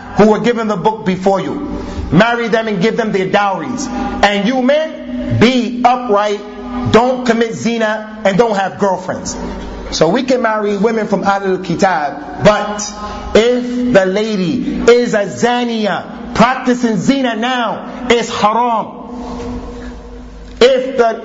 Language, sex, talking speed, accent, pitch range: English, male, 135 wpm, American, 195-240 Hz